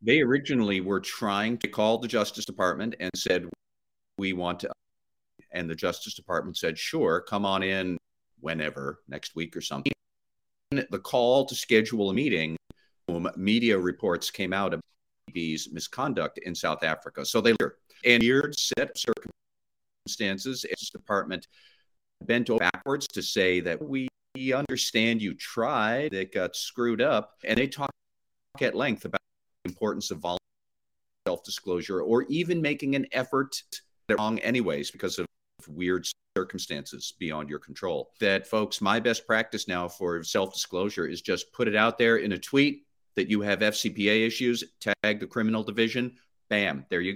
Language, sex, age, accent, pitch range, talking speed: English, male, 50-69, American, 95-125 Hz, 155 wpm